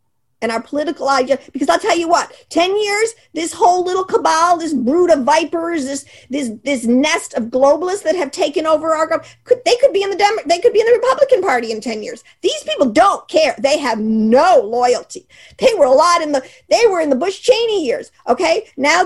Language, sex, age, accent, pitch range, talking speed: English, female, 50-69, American, 275-415 Hz, 225 wpm